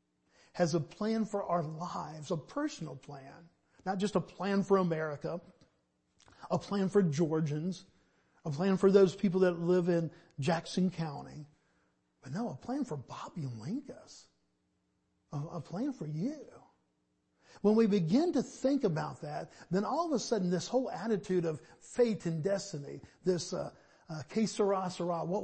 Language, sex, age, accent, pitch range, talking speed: English, male, 50-69, American, 160-205 Hz, 155 wpm